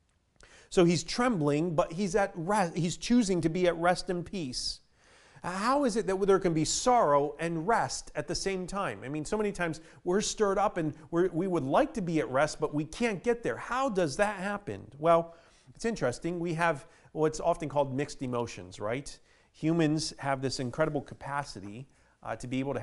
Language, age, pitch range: English, 40-59, 130-175 Hz